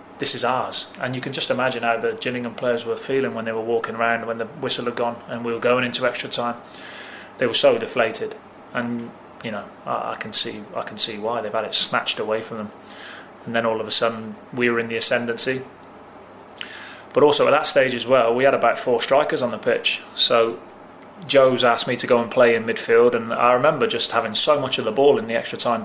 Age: 20-39